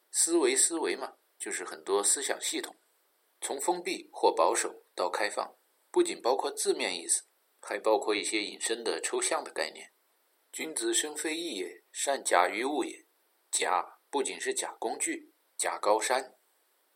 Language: Chinese